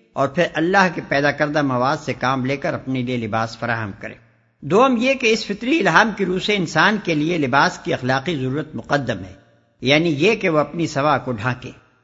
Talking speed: 210 wpm